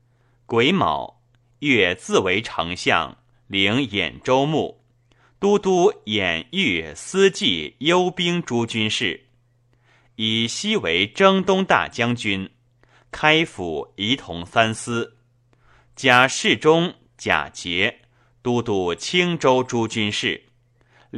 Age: 30-49